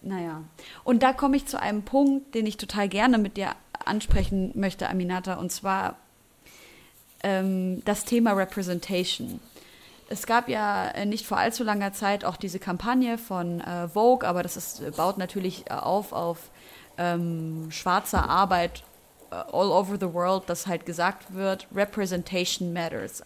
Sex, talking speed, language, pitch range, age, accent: female, 145 wpm, German, 175-210 Hz, 30-49, German